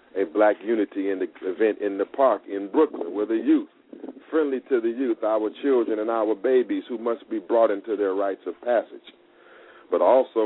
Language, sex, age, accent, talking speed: English, male, 40-59, American, 185 wpm